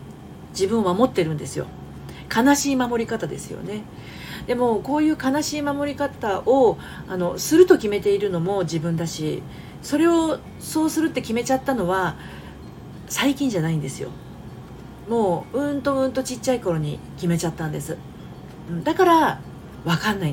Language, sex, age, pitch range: Japanese, female, 40-59, 160-260 Hz